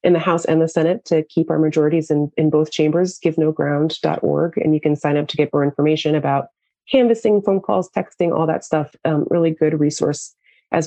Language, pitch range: English, 150-175 Hz